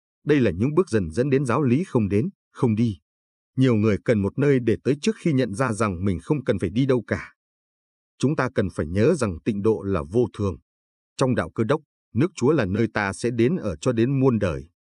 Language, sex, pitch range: Vietnamese, male, 95-125 Hz